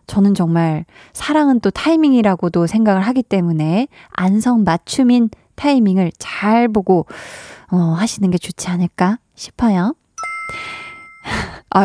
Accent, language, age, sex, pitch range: native, Korean, 20-39, female, 185-255 Hz